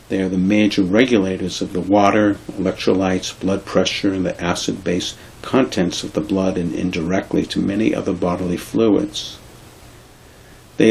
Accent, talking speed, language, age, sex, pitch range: American, 145 wpm, English, 60-79, male, 95-110 Hz